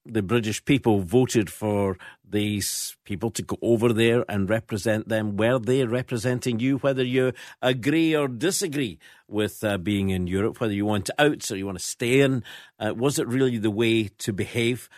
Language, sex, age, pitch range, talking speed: English, male, 50-69, 100-130 Hz, 190 wpm